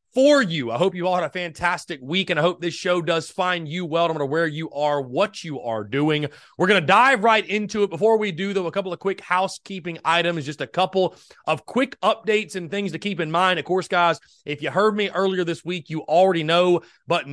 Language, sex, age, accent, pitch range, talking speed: English, male, 30-49, American, 155-200 Hz, 245 wpm